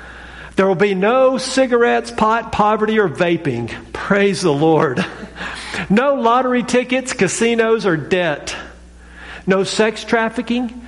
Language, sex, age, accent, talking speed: English, male, 50-69, American, 115 wpm